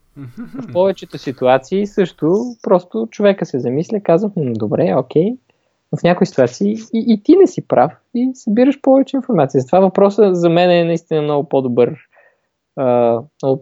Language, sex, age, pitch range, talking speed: Bulgarian, male, 20-39, 130-195 Hz, 150 wpm